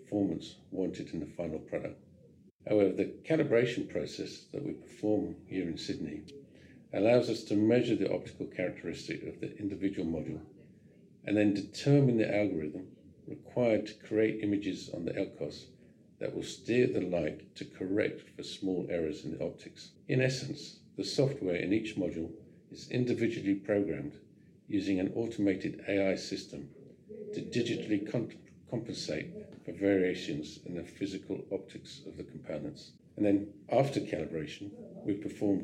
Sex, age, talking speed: male, 50-69, 145 wpm